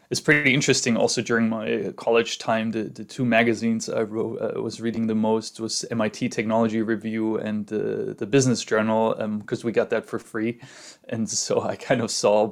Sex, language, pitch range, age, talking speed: male, English, 105-120 Hz, 20-39, 190 wpm